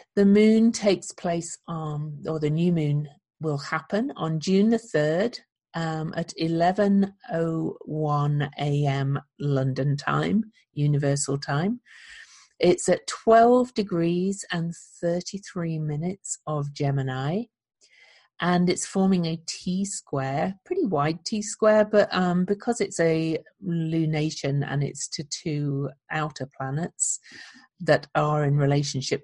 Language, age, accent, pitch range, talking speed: English, 50-69, British, 145-185 Hz, 115 wpm